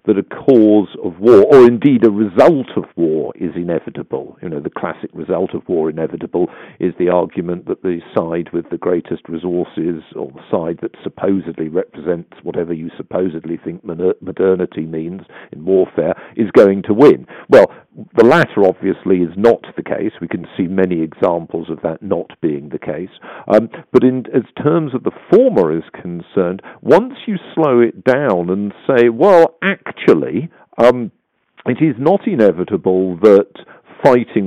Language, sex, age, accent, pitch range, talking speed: English, male, 50-69, British, 90-130 Hz, 165 wpm